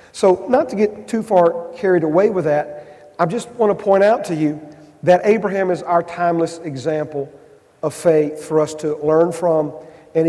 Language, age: English, 40-59